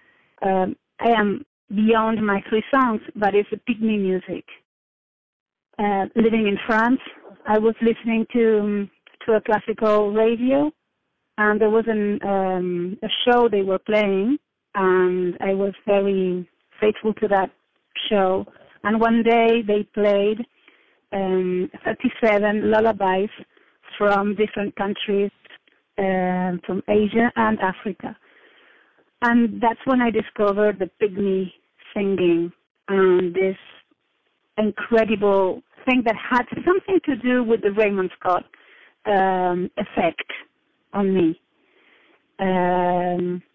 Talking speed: 115 wpm